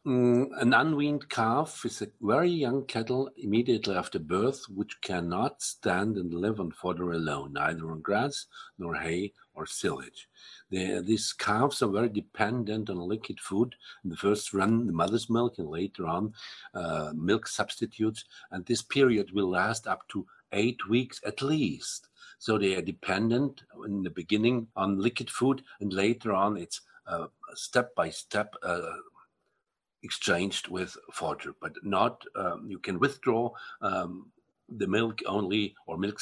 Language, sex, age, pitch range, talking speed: English, male, 50-69, 100-135 Hz, 145 wpm